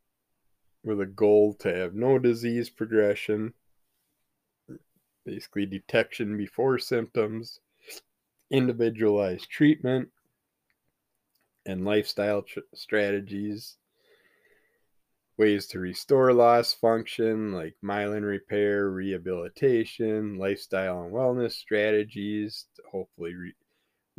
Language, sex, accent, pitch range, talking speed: English, male, American, 95-115 Hz, 85 wpm